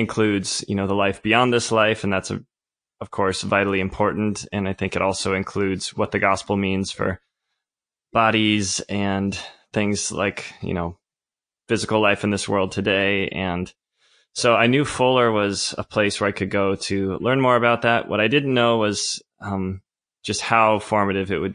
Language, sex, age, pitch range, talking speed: English, male, 20-39, 95-110 Hz, 185 wpm